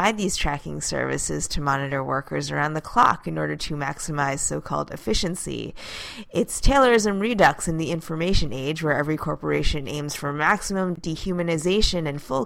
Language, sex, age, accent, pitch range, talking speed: English, female, 30-49, American, 155-195 Hz, 155 wpm